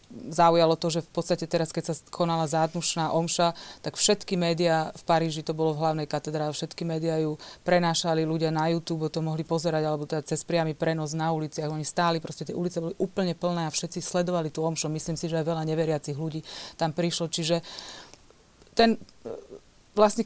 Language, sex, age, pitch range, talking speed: Slovak, female, 30-49, 165-190 Hz, 185 wpm